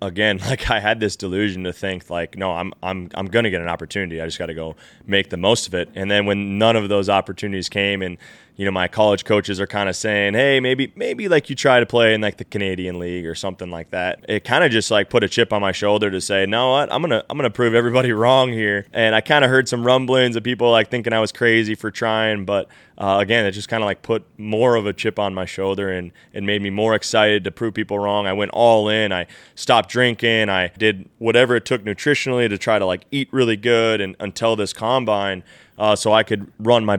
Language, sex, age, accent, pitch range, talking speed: English, male, 20-39, American, 95-115 Hz, 255 wpm